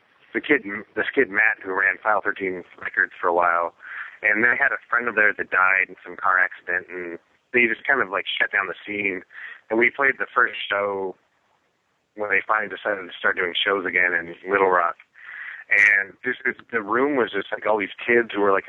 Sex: male